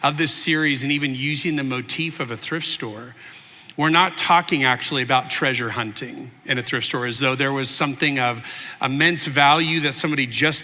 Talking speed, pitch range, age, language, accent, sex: 190 wpm, 125-150 Hz, 40-59, English, American, male